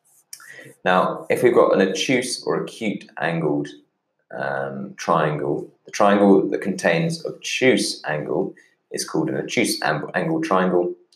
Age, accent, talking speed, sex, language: 20-39, British, 130 wpm, male, English